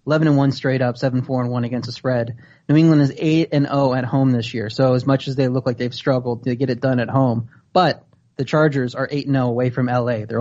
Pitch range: 125-140 Hz